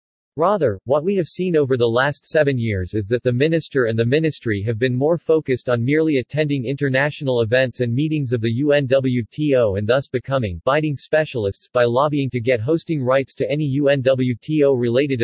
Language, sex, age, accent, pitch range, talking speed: English, male, 40-59, American, 120-150 Hz, 175 wpm